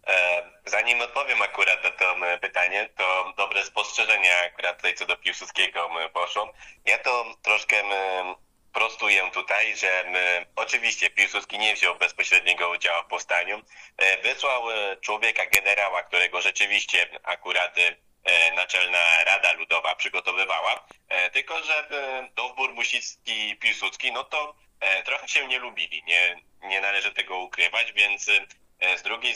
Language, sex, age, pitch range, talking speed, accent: Polish, male, 20-39, 90-105 Hz, 125 wpm, native